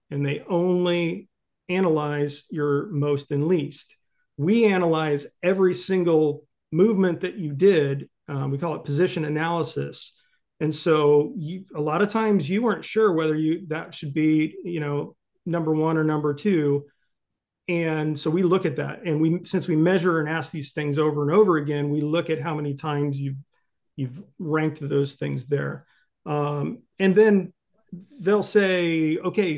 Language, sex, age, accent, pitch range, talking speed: English, male, 40-59, American, 150-180 Hz, 165 wpm